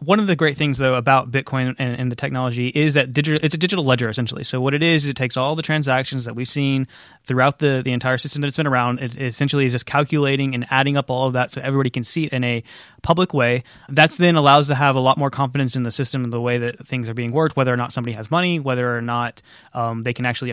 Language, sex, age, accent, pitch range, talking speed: English, male, 20-39, American, 125-150 Hz, 280 wpm